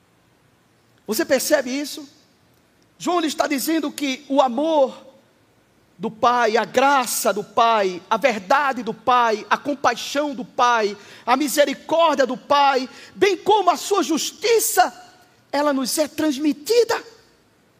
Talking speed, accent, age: 120 wpm, Brazilian, 50-69